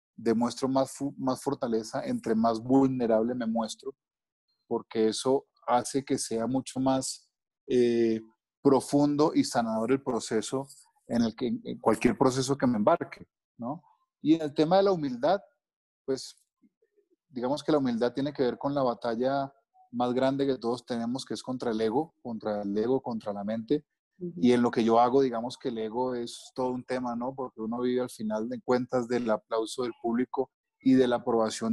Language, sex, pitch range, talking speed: Spanish, male, 115-135 Hz, 180 wpm